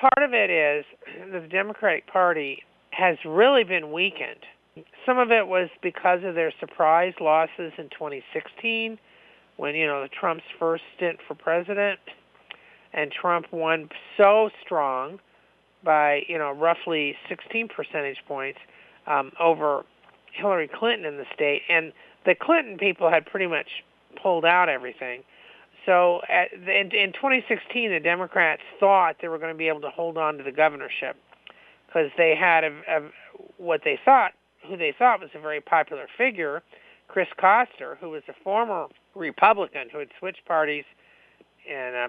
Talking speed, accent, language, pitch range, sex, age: 145 wpm, American, English, 150-195 Hz, male, 50-69